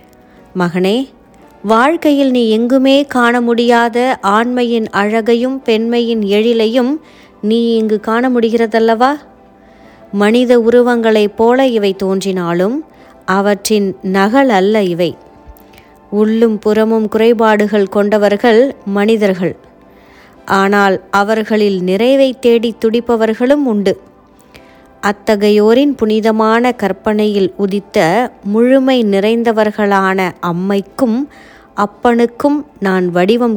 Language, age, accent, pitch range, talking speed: Tamil, 20-39, native, 200-235 Hz, 80 wpm